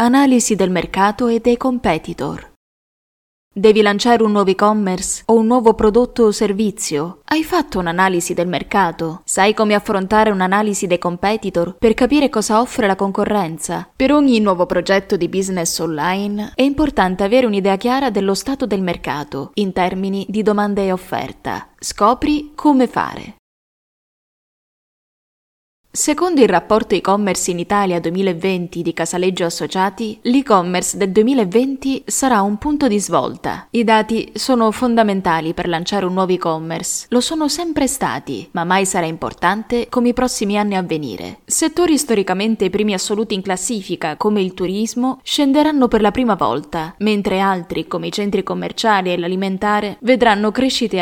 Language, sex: Italian, female